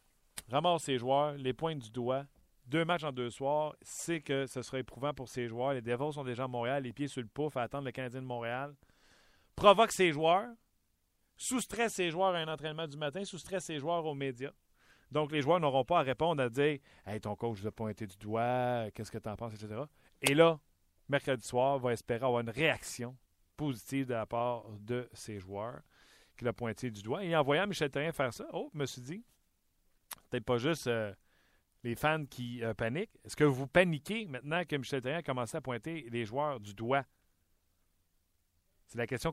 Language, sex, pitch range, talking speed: French, male, 115-150 Hz, 210 wpm